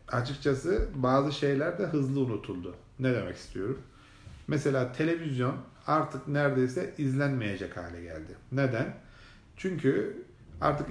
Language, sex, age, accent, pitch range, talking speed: Turkish, male, 40-59, native, 115-145 Hz, 105 wpm